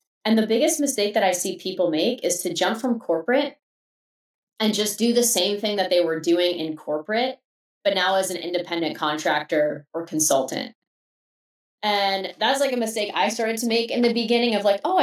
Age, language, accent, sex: 20-39, English, American, female